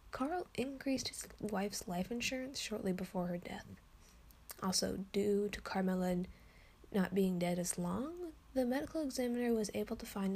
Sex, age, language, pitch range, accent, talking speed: female, 10-29, English, 180-220 Hz, American, 150 wpm